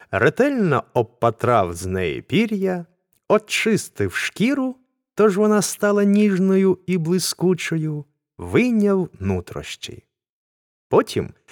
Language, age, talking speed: Ukrainian, 30-49, 85 wpm